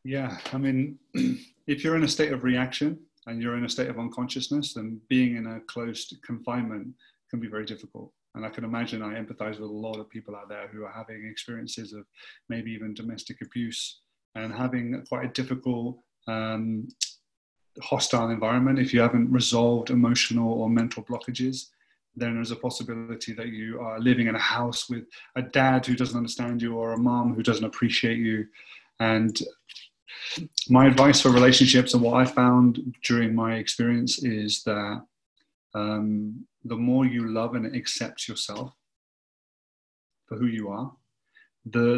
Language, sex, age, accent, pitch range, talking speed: English, male, 30-49, British, 115-130 Hz, 175 wpm